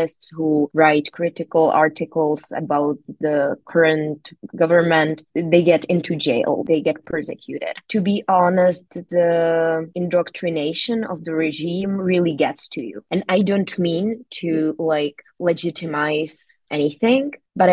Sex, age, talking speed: female, 20-39, 120 wpm